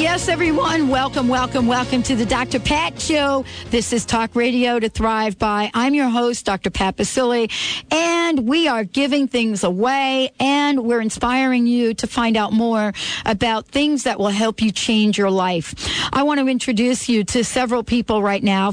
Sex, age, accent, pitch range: female, 50-69, American, 210-260 Hz